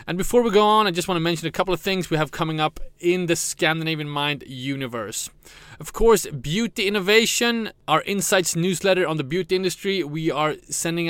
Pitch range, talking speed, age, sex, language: 140-180 Hz, 200 wpm, 30-49, male, English